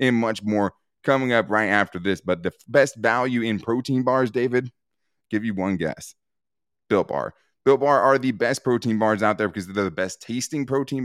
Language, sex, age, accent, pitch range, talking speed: English, male, 20-39, American, 95-120 Hz, 205 wpm